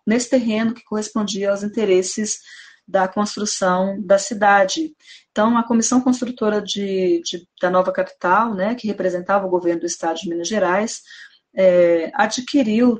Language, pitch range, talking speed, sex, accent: Portuguese, 185-230 Hz, 130 wpm, female, Brazilian